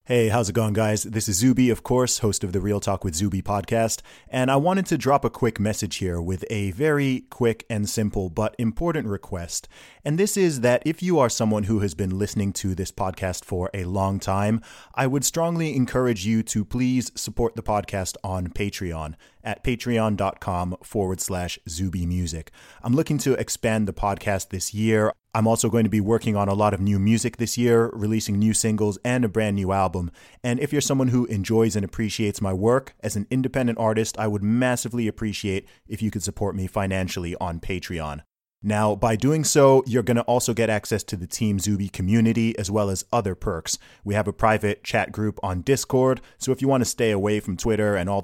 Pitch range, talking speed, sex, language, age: 95-120 Hz, 210 wpm, male, English, 30-49